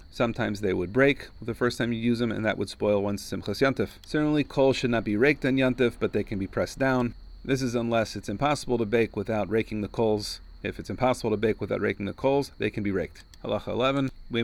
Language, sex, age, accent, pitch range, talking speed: English, male, 40-59, American, 105-125 Hz, 240 wpm